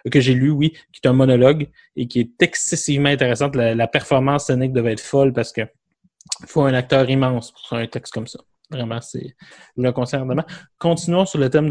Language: French